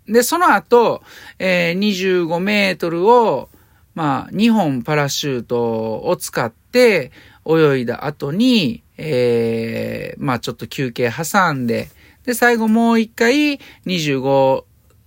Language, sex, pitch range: Japanese, male, 120-185 Hz